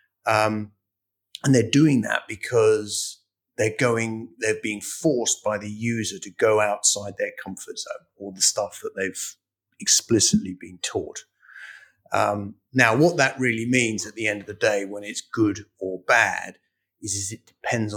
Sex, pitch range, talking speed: male, 105-120 Hz, 165 wpm